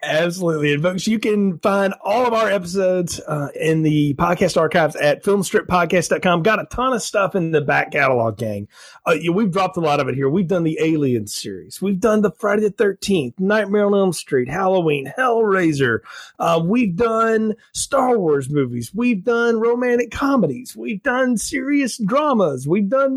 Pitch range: 150-210 Hz